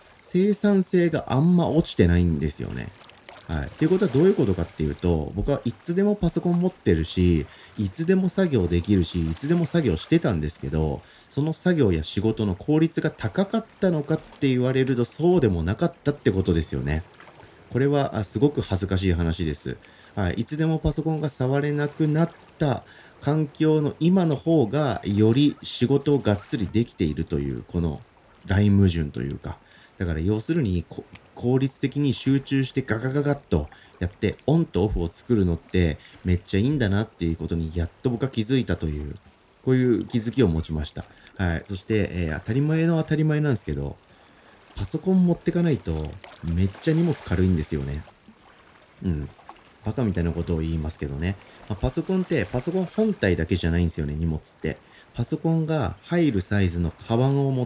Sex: male